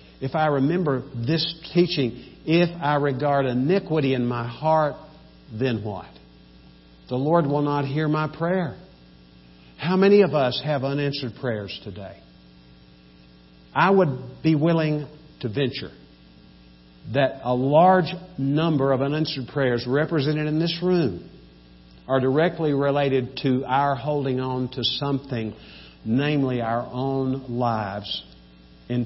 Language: English